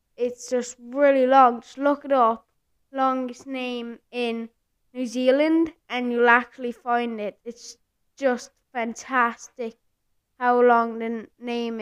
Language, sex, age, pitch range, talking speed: English, female, 10-29, 230-260 Hz, 125 wpm